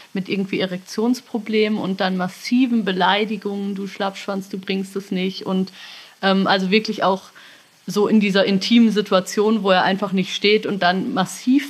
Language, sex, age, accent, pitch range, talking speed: German, female, 30-49, German, 190-220 Hz, 160 wpm